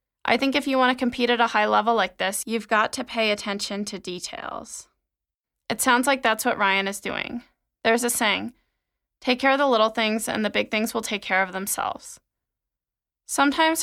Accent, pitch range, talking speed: American, 205-250 Hz, 205 wpm